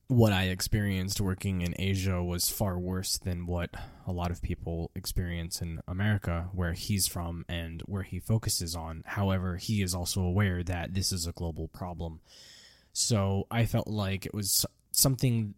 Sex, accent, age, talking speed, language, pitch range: male, American, 20-39, 170 wpm, English, 90-105 Hz